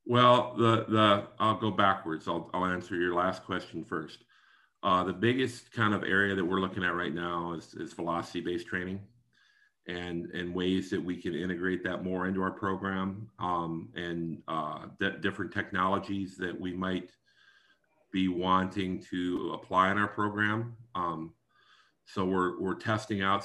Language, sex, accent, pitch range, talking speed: English, male, American, 85-100 Hz, 160 wpm